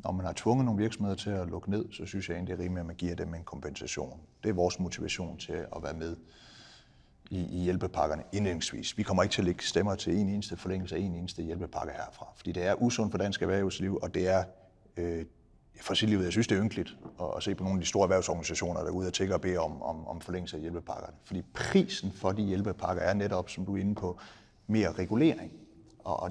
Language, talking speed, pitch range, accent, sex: Danish, 245 wpm, 90-105 Hz, native, male